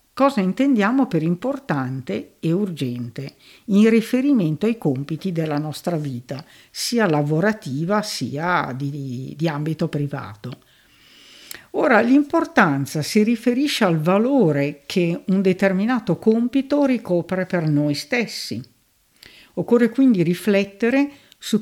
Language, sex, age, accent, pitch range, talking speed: Italian, female, 50-69, native, 145-235 Hz, 105 wpm